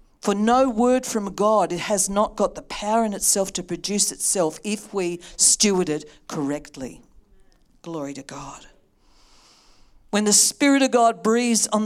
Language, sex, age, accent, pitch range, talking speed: English, female, 50-69, Australian, 150-225 Hz, 155 wpm